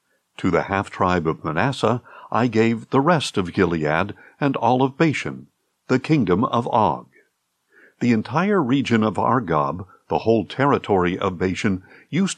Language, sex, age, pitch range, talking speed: English, male, 60-79, 105-145 Hz, 145 wpm